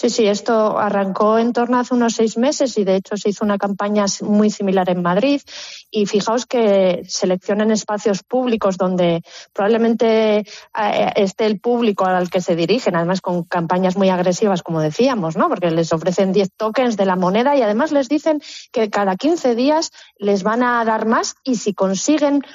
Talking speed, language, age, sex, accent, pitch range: 185 wpm, Spanish, 30-49, female, Spanish, 190-240 Hz